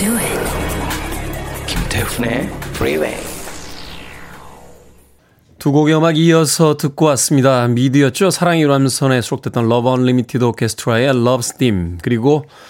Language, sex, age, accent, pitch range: Korean, male, 20-39, native, 115-155 Hz